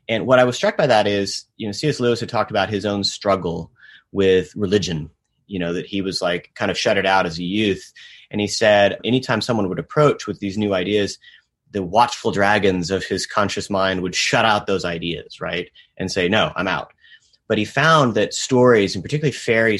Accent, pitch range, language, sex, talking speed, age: American, 95-115 Hz, English, male, 215 wpm, 30-49